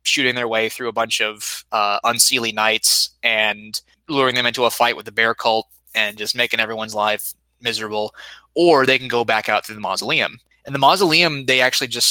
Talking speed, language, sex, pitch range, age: 205 wpm, English, male, 110-125 Hz, 20-39